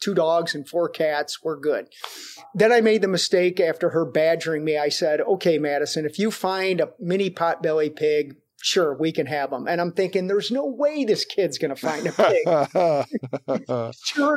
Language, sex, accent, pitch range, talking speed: English, male, American, 165-220 Hz, 190 wpm